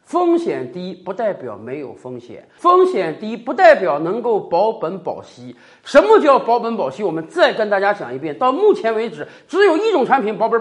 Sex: male